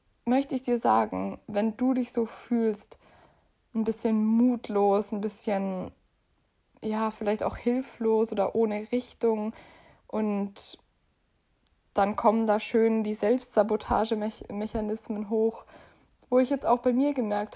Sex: female